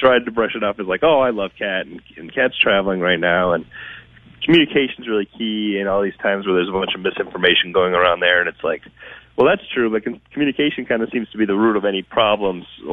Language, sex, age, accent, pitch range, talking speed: English, male, 40-59, American, 90-125 Hz, 240 wpm